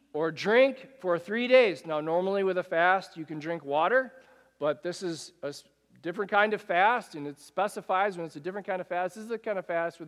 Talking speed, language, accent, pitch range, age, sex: 230 wpm, English, American, 165-230 Hz, 40-59, male